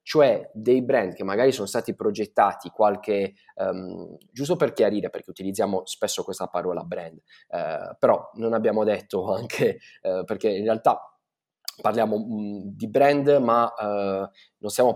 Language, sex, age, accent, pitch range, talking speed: Italian, male, 20-39, native, 105-140 Hz, 130 wpm